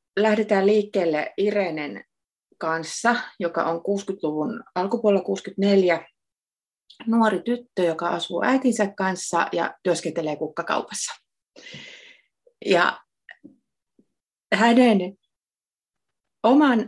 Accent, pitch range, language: native, 165-210 Hz, Finnish